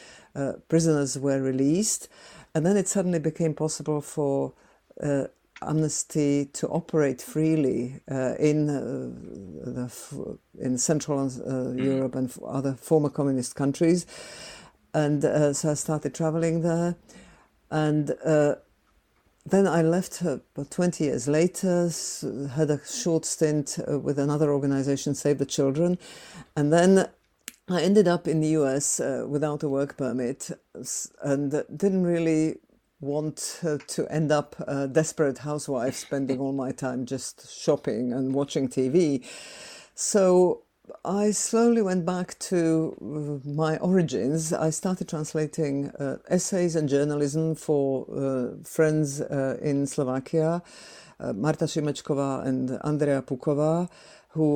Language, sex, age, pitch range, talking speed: Slovak, female, 50-69, 140-165 Hz, 130 wpm